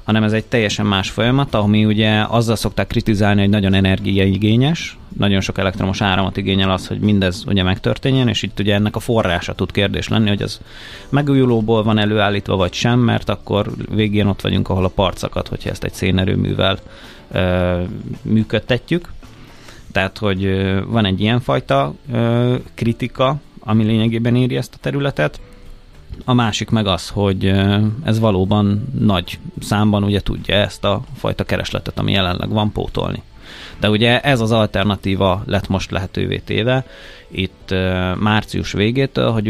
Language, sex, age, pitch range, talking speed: Hungarian, male, 30-49, 95-115 Hz, 145 wpm